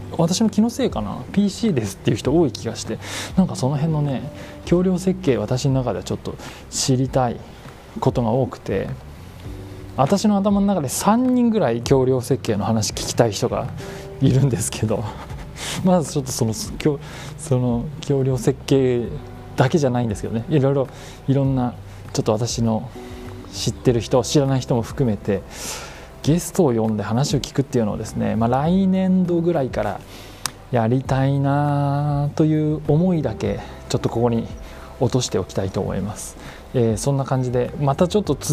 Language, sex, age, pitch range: Japanese, male, 20-39, 105-145 Hz